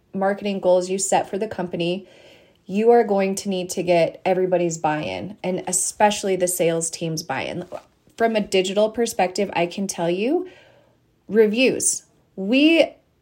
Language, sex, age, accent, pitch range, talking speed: English, female, 30-49, American, 180-225 Hz, 145 wpm